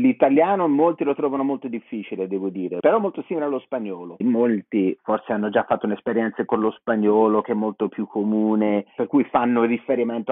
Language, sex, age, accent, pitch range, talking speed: Italian, male, 30-49, native, 110-145 Hz, 180 wpm